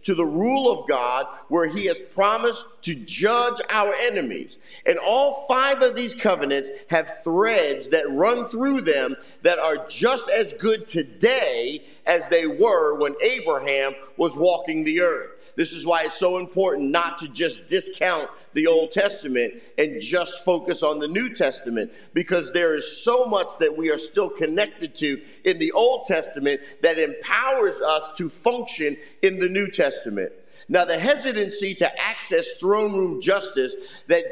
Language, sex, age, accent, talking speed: English, male, 50-69, American, 165 wpm